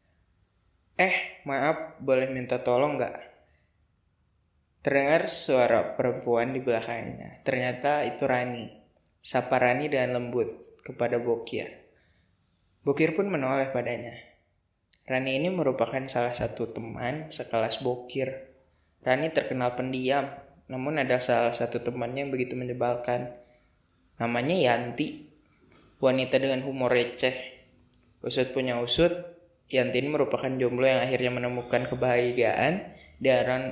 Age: 20-39